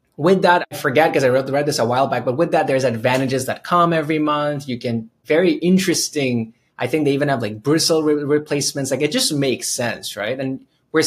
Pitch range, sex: 120-160 Hz, male